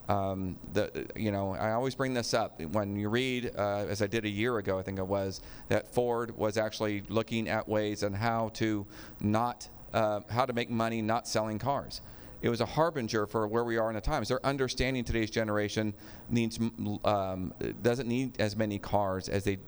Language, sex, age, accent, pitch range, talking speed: English, male, 40-59, American, 105-120 Hz, 200 wpm